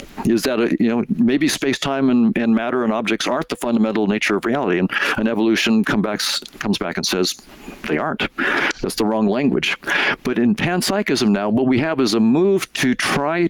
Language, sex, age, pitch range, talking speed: English, male, 50-69, 115-140 Hz, 200 wpm